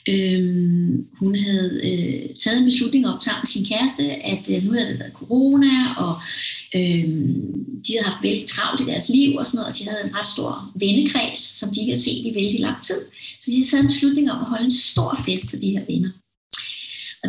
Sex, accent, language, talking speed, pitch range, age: female, native, Danish, 225 wpm, 190-255 Hz, 30-49